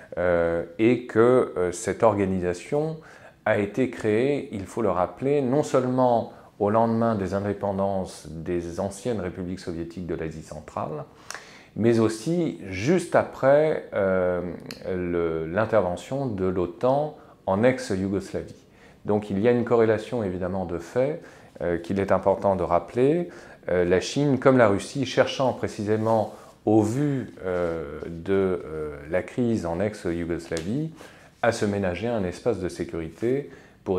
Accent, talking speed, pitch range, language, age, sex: French, 135 wpm, 90-120 Hz, French, 40-59, male